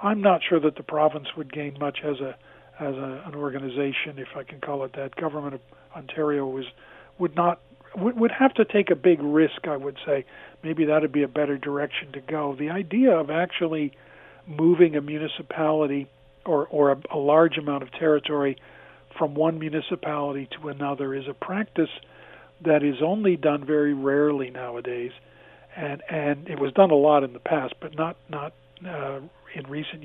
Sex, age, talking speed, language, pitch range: male, 50-69, 185 wpm, English, 140-170 Hz